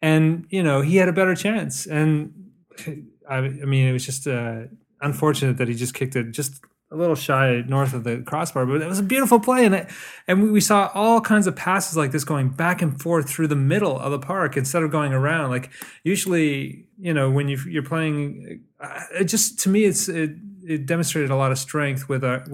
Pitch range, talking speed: 130-160 Hz, 225 wpm